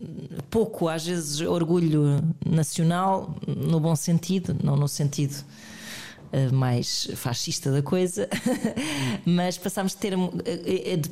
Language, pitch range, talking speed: Portuguese, 155-175 Hz, 110 wpm